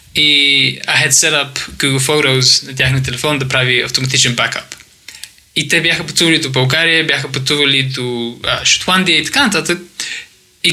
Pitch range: 135-165 Hz